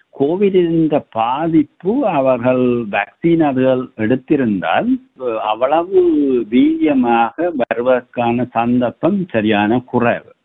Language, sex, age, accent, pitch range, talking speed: Tamil, male, 60-79, native, 110-145 Hz, 75 wpm